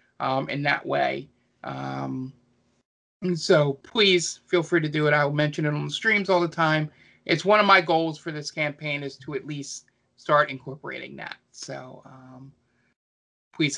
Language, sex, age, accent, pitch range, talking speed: English, male, 20-39, American, 135-170 Hz, 175 wpm